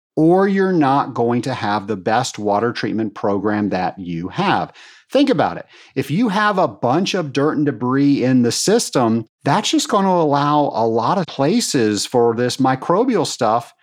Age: 40-59